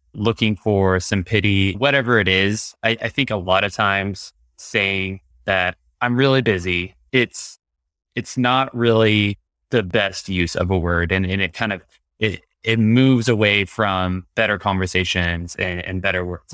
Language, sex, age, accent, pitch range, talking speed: English, male, 20-39, American, 90-115 Hz, 165 wpm